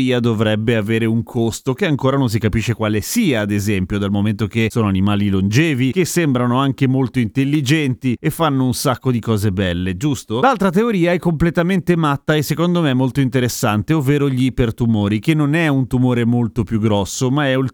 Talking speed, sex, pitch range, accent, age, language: 190 wpm, male, 115-160 Hz, native, 30-49, Italian